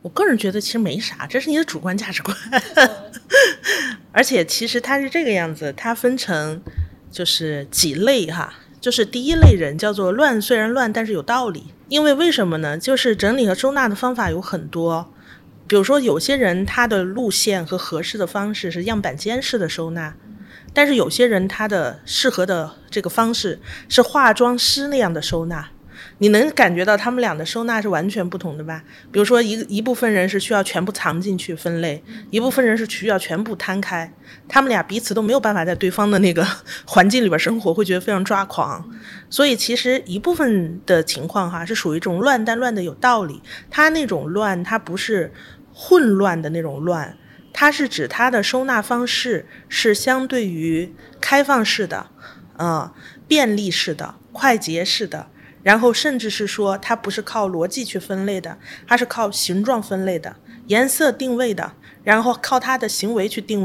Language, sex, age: Chinese, female, 30-49